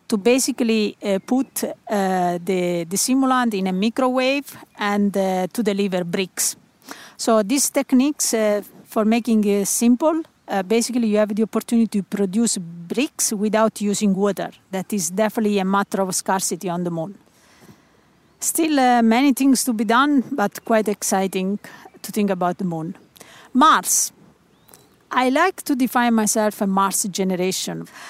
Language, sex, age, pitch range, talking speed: English, female, 50-69, 195-235 Hz, 150 wpm